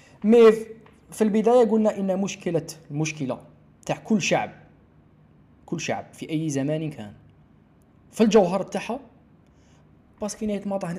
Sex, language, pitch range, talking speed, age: male, Arabic, 135-185 Hz, 125 wpm, 20-39